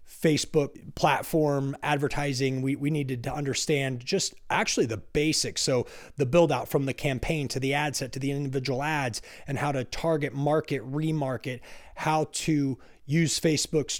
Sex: male